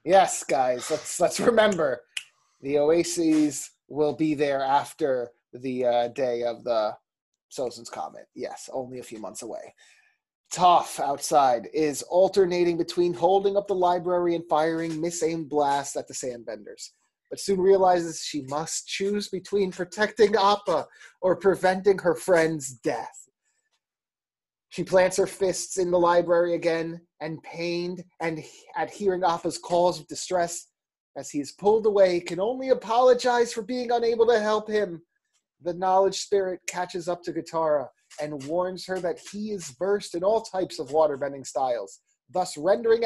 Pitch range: 155-200 Hz